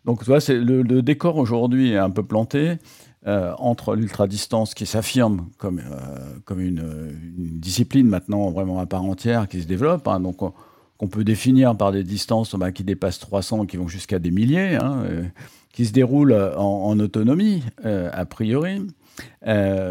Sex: male